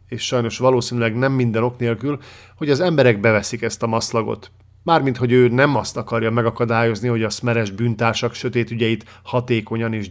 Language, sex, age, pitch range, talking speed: Hungarian, male, 50-69, 105-125 Hz, 165 wpm